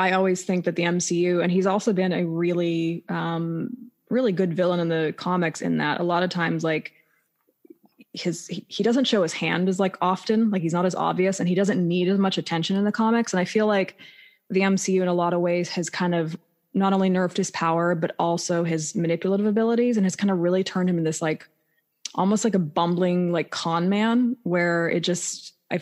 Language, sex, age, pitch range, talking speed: English, female, 20-39, 170-195 Hz, 220 wpm